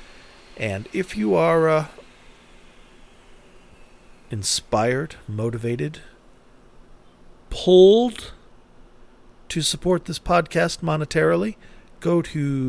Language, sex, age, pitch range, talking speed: English, male, 50-69, 115-155 Hz, 70 wpm